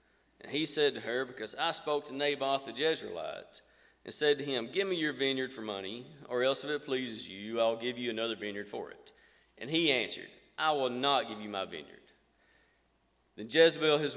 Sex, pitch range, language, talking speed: male, 115-140 Hz, English, 205 wpm